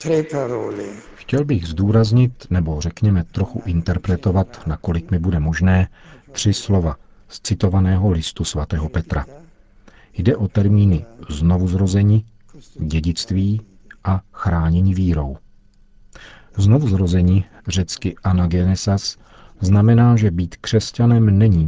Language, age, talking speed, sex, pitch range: Czech, 50-69, 95 wpm, male, 85-100 Hz